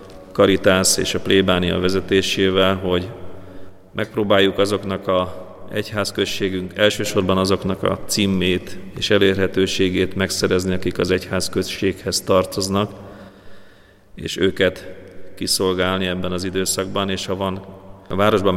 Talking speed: 105 wpm